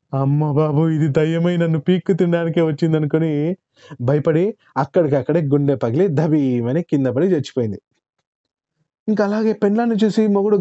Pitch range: 125-160 Hz